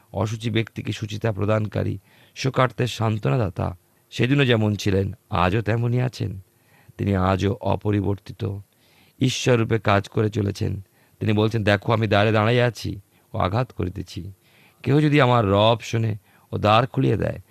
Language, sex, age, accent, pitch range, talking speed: Bengali, male, 50-69, native, 100-115 Hz, 80 wpm